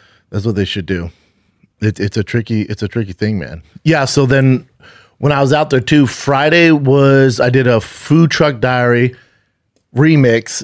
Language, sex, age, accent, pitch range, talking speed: English, male, 30-49, American, 105-130 Hz, 175 wpm